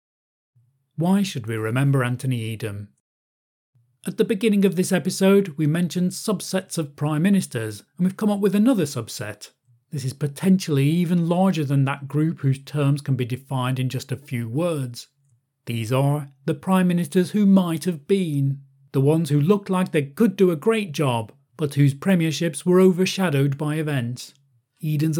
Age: 40-59